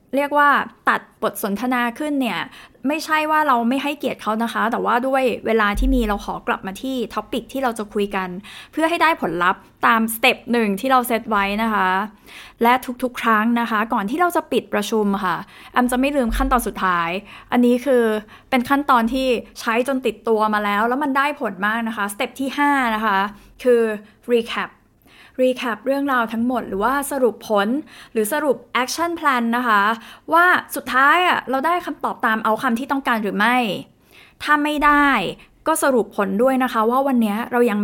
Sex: female